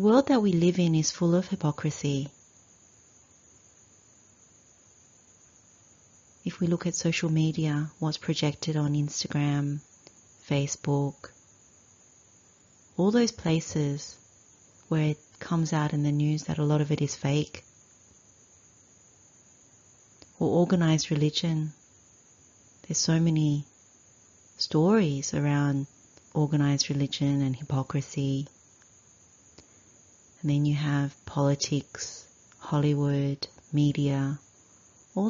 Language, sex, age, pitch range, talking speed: English, female, 30-49, 120-160 Hz, 100 wpm